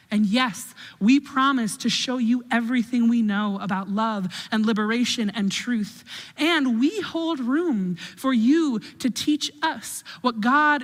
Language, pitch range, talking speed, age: English, 195-255 Hz, 150 wpm, 30-49